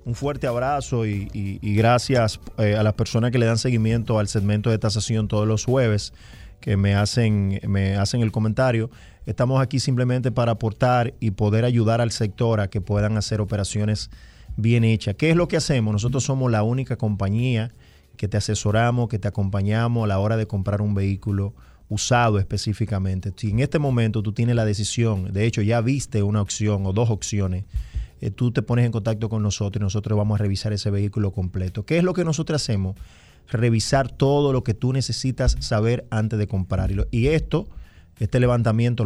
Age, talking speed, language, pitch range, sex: 30-49, 190 wpm, Spanish, 105-120 Hz, male